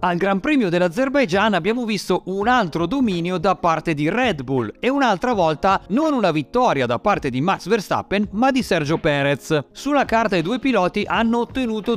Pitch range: 150-225 Hz